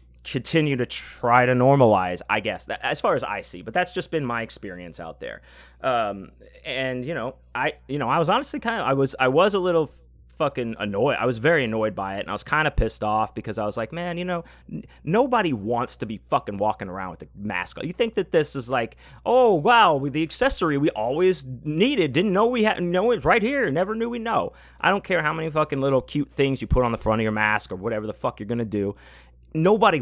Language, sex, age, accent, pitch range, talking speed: English, male, 30-49, American, 105-160 Hz, 250 wpm